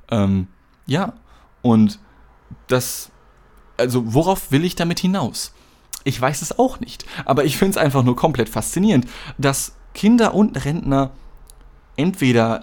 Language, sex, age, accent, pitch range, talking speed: German, male, 20-39, German, 110-140 Hz, 135 wpm